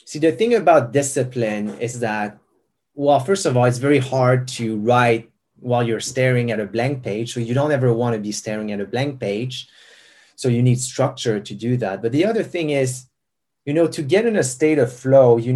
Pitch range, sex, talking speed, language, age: 115-135 Hz, male, 220 wpm, English, 30-49